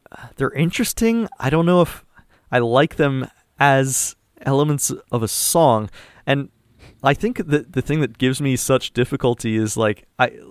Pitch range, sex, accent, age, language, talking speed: 110-140 Hz, male, American, 30-49, English, 160 wpm